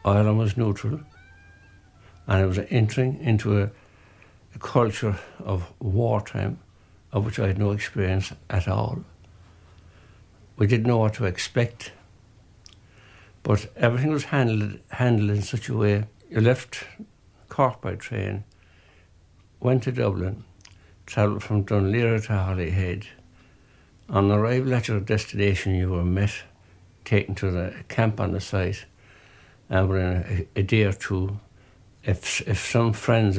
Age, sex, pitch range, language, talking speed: 60-79, male, 95-110 Hz, English, 135 wpm